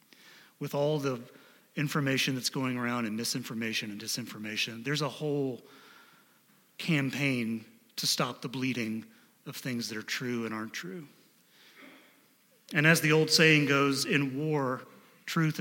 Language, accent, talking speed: English, American, 140 wpm